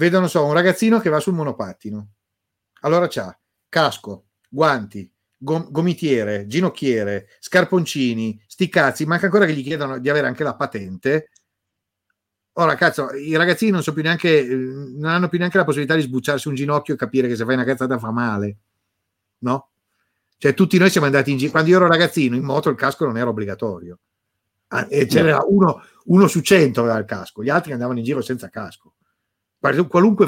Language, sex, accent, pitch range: Italian, male, native, 115-165 Hz